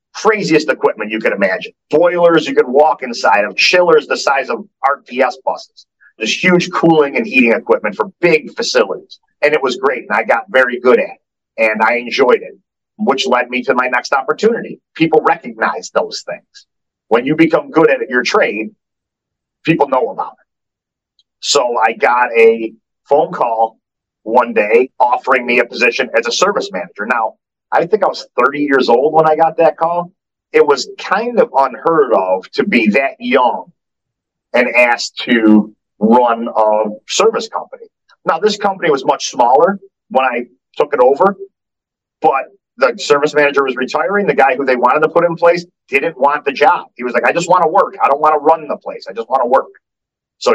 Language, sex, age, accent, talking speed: English, male, 40-59, American, 190 wpm